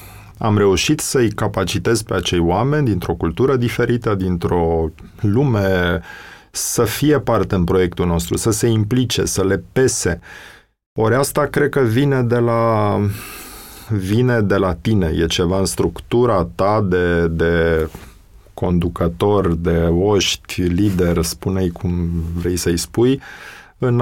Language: Romanian